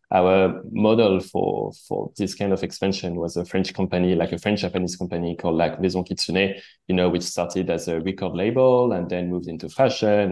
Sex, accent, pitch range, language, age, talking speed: male, French, 90-105 Hz, English, 20-39, 200 wpm